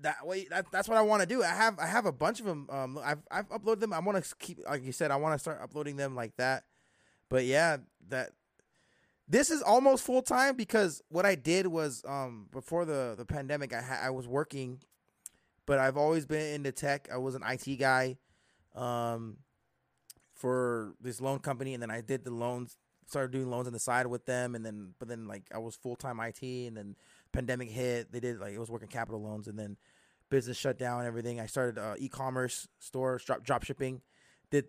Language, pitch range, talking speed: English, 125-160 Hz, 220 wpm